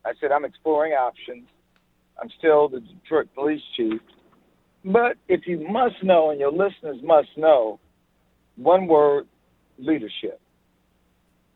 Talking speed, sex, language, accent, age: 125 wpm, male, English, American, 60-79